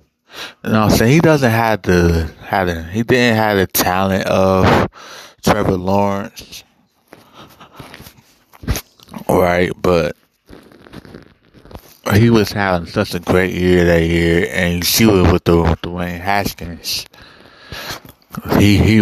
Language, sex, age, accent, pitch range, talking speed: English, male, 20-39, American, 85-100 Hz, 125 wpm